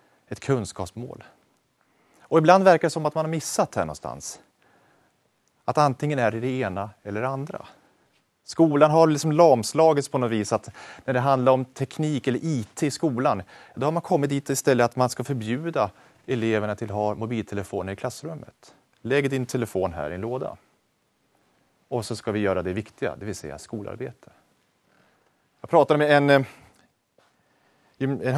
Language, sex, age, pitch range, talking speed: Swedish, male, 30-49, 100-140 Hz, 165 wpm